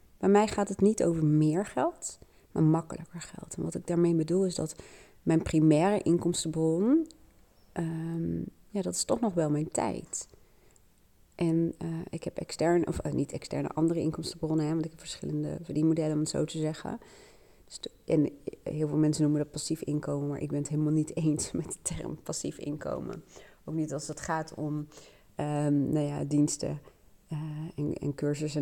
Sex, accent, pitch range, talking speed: female, Dutch, 145-165 Hz, 170 wpm